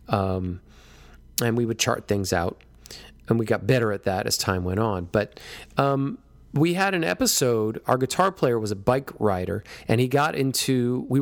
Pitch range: 100-135 Hz